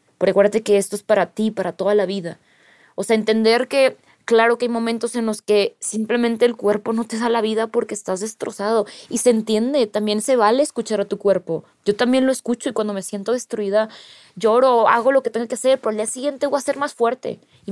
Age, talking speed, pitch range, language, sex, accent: 20-39, 235 wpm, 205-245 Hz, Spanish, female, Mexican